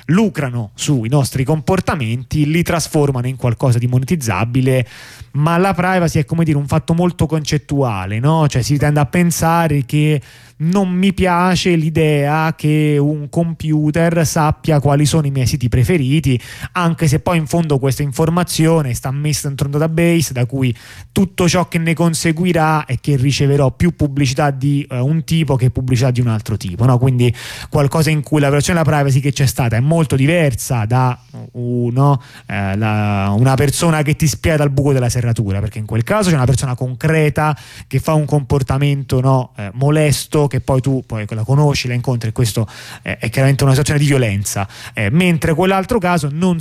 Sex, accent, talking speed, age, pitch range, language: male, native, 180 wpm, 30-49, 120-160 Hz, Italian